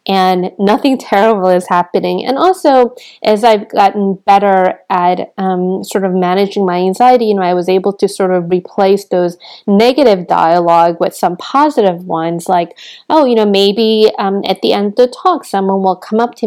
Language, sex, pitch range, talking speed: English, female, 185-225 Hz, 185 wpm